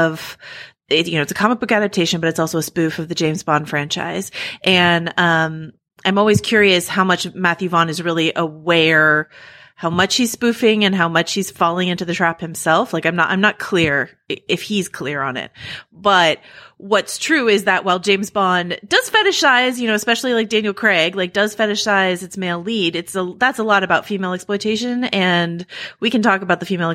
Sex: female